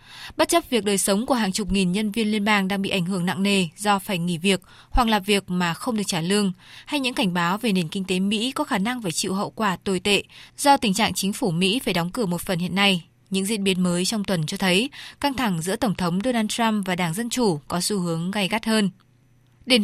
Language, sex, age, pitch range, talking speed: Vietnamese, female, 20-39, 185-225 Hz, 265 wpm